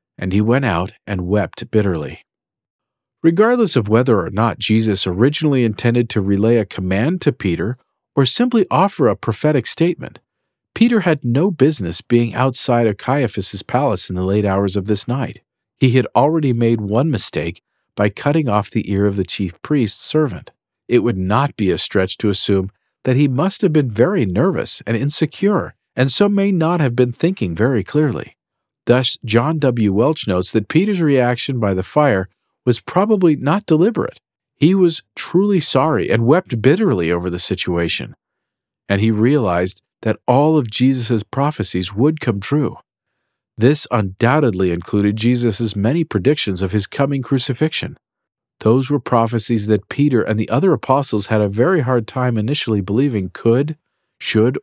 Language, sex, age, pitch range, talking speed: English, male, 50-69, 105-145 Hz, 165 wpm